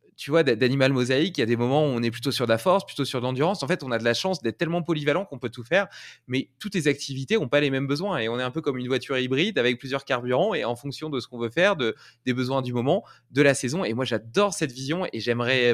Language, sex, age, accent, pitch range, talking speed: French, male, 20-39, French, 120-155 Hz, 300 wpm